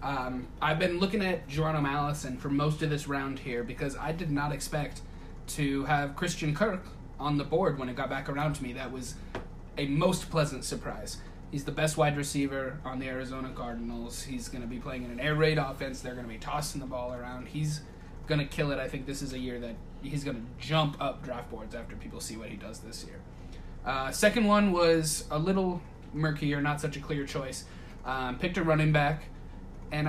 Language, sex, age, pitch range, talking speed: English, male, 20-39, 135-155 Hz, 220 wpm